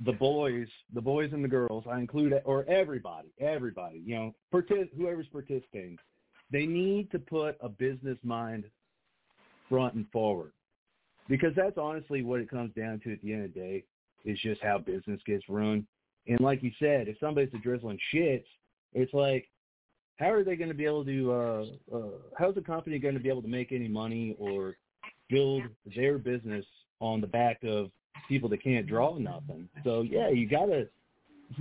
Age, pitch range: 40-59, 115-150 Hz